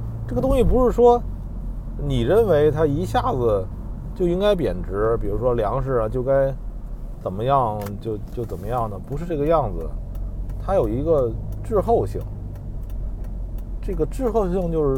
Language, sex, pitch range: Chinese, male, 110-160 Hz